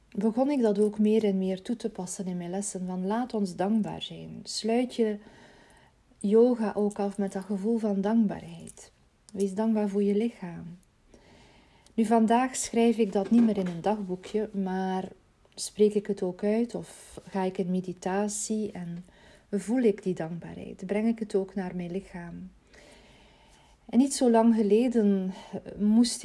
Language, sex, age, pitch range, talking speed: Dutch, female, 40-59, 190-220 Hz, 165 wpm